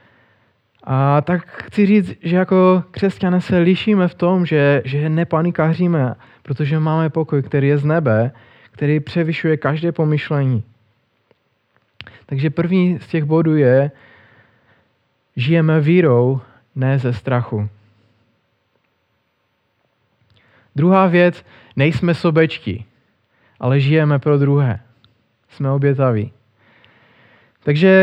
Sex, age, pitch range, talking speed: male, 20-39, 120-170 Hz, 100 wpm